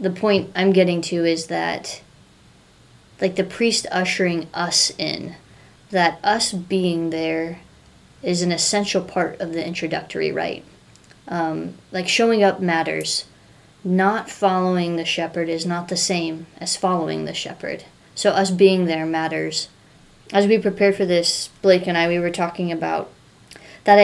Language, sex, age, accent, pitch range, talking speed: English, female, 20-39, American, 170-195 Hz, 145 wpm